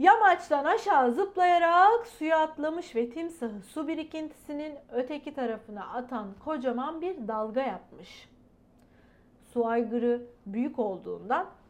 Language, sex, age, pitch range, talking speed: Turkish, female, 40-59, 270-385 Hz, 105 wpm